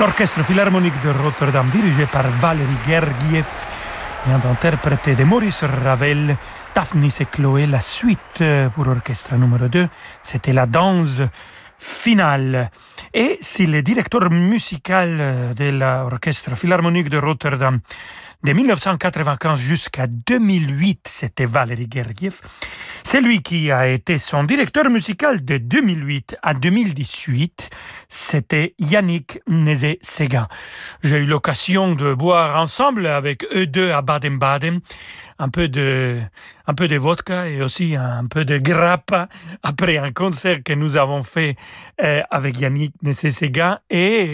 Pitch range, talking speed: 140-180 Hz, 125 wpm